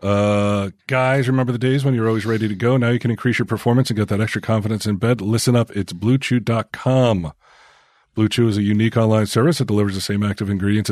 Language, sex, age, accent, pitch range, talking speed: English, male, 40-59, American, 100-125 Hz, 225 wpm